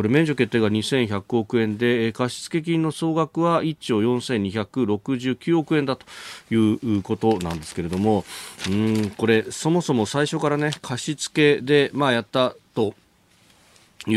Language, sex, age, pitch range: Japanese, male, 40-59, 105-145 Hz